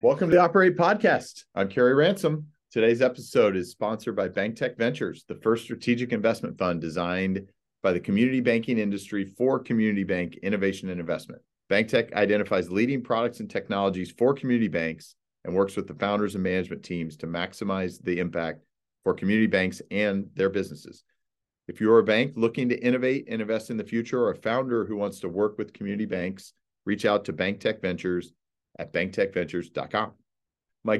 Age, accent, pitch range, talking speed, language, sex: 40-59, American, 95-125 Hz, 170 wpm, English, male